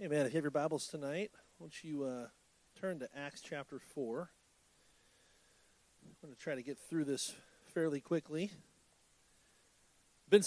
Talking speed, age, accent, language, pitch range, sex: 160 wpm, 30-49, American, English, 140-180 Hz, male